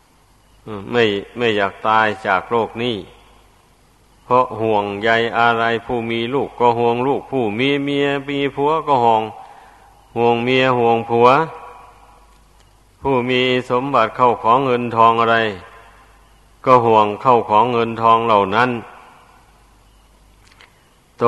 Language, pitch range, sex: Thai, 110-120 Hz, male